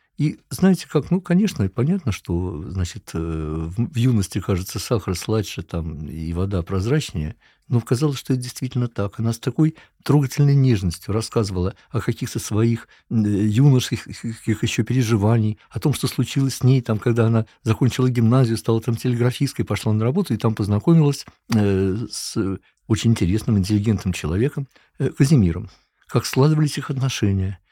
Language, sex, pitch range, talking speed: Russian, male, 95-130 Hz, 140 wpm